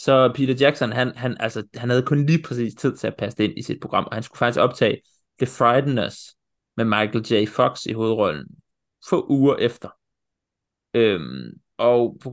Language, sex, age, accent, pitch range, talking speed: Danish, male, 30-49, native, 110-135 Hz, 190 wpm